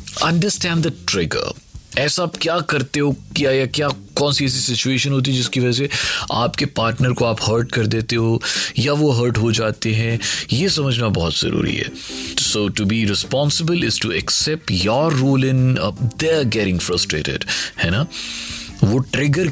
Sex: male